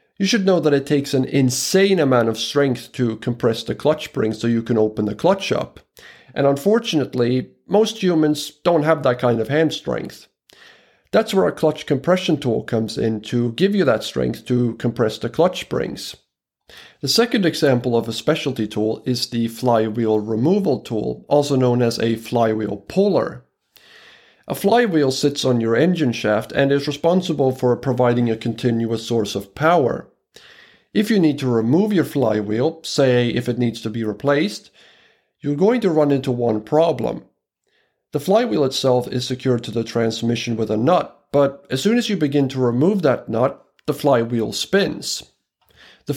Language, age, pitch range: English, 50-69, 115-155 Hz